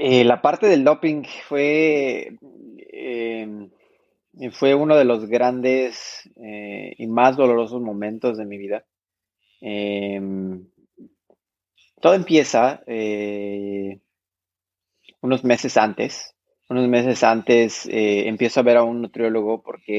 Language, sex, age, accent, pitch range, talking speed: Spanish, male, 30-49, Mexican, 105-130 Hz, 115 wpm